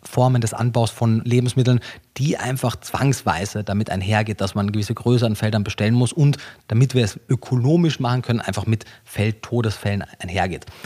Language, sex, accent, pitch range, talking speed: German, male, German, 110-135 Hz, 160 wpm